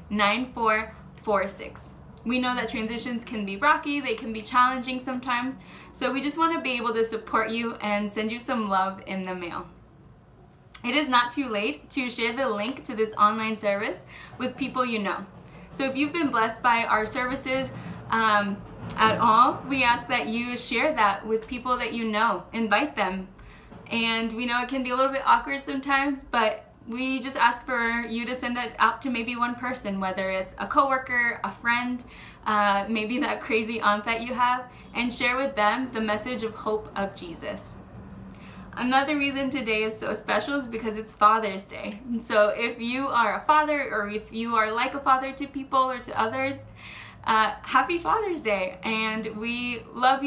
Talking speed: 185 wpm